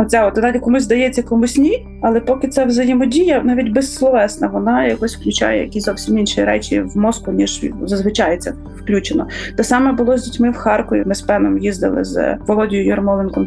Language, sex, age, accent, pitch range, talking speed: Ukrainian, female, 20-39, native, 210-250 Hz, 180 wpm